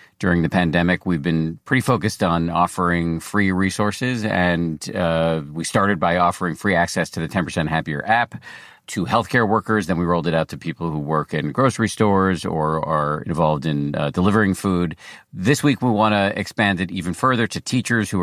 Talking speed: 190 wpm